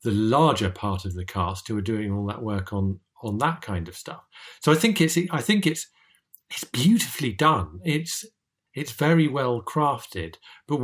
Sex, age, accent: male, 40-59, British